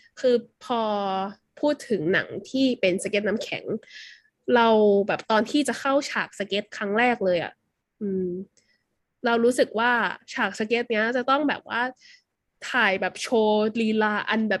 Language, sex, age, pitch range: Thai, female, 20-39, 200-265 Hz